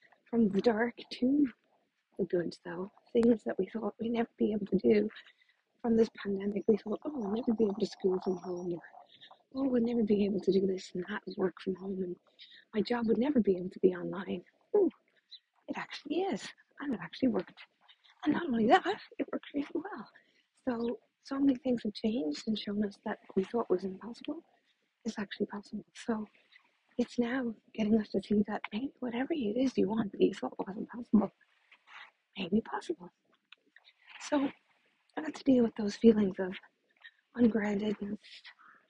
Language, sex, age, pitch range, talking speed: English, female, 40-59, 200-240 Hz, 185 wpm